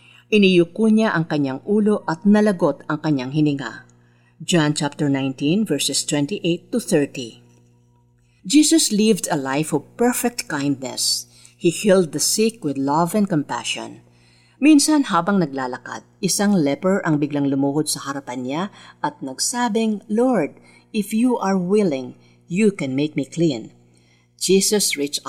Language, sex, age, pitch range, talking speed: Filipino, female, 50-69, 135-200 Hz, 135 wpm